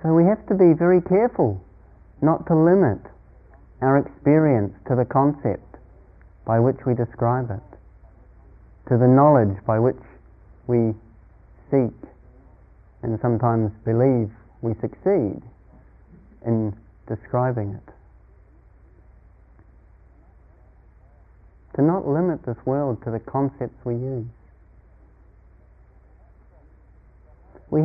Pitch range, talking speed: 105-155 Hz, 100 wpm